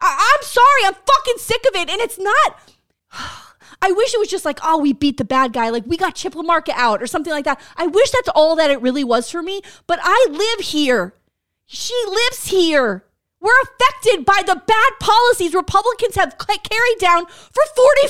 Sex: female